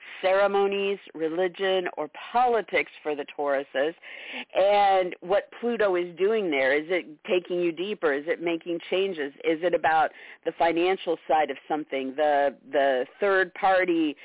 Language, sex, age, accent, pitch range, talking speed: English, female, 50-69, American, 145-185 Hz, 140 wpm